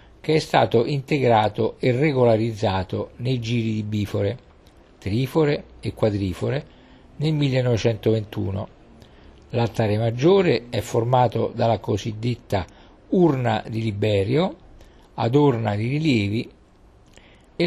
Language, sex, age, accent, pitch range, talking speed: Italian, male, 50-69, native, 100-135 Hz, 95 wpm